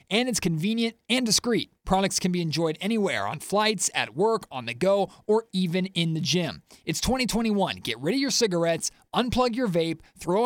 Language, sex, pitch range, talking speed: English, male, 175-215 Hz, 190 wpm